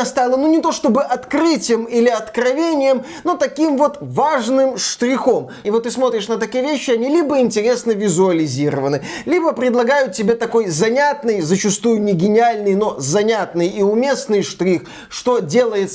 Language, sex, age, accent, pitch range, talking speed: Russian, male, 20-39, native, 180-245 Hz, 145 wpm